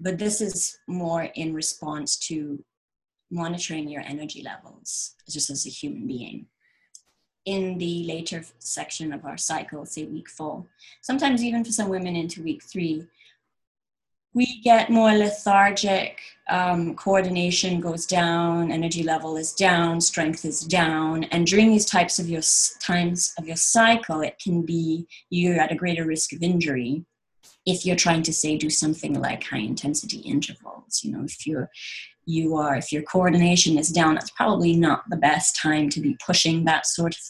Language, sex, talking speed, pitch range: English, female, 165 wpm, 155-195 Hz